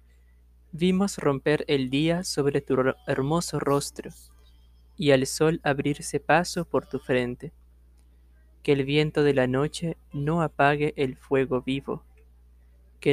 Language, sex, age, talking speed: Spanish, male, 20-39, 130 wpm